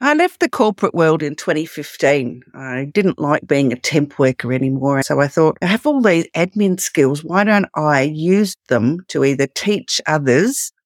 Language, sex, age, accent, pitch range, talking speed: English, female, 50-69, Australian, 150-200 Hz, 180 wpm